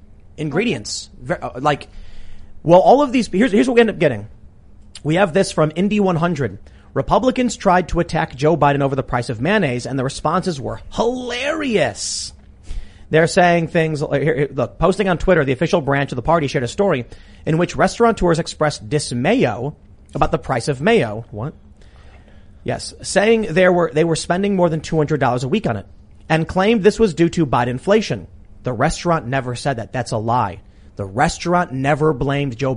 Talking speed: 180 wpm